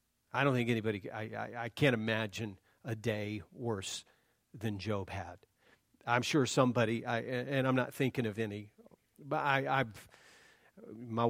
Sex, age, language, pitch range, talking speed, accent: male, 40-59, English, 110-130 Hz, 155 wpm, American